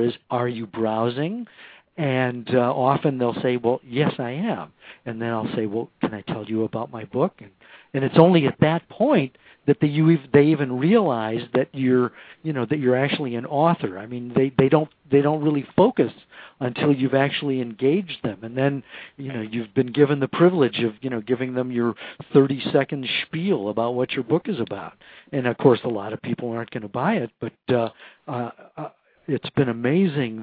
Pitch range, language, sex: 120-145 Hz, English, male